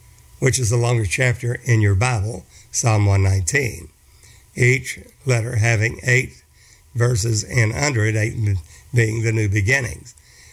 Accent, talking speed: American, 130 wpm